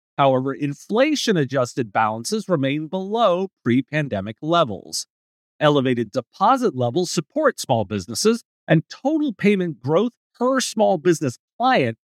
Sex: male